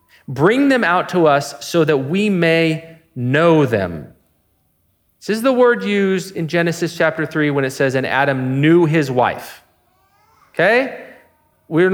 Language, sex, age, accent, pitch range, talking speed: English, male, 30-49, American, 110-165 Hz, 150 wpm